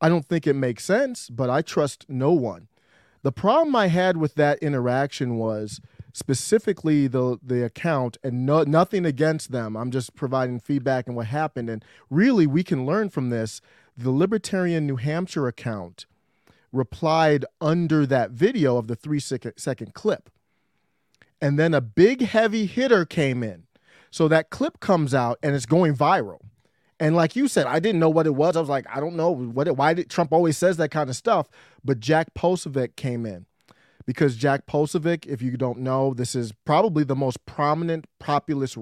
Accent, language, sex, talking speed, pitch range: American, English, male, 185 wpm, 125-165 Hz